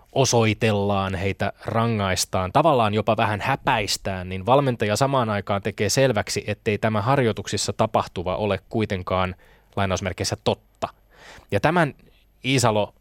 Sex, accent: male, native